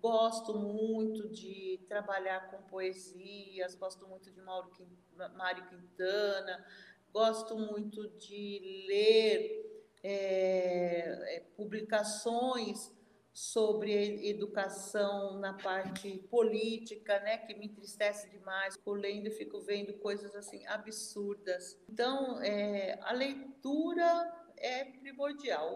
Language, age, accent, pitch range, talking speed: Portuguese, 50-69, Brazilian, 185-225 Hz, 100 wpm